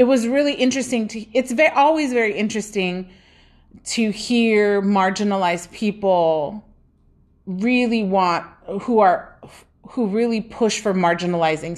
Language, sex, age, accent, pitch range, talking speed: English, female, 30-49, American, 175-235 Hz, 115 wpm